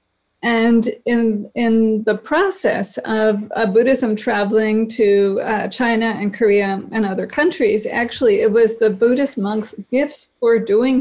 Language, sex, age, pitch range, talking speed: English, female, 50-69, 210-250 Hz, 140 wpm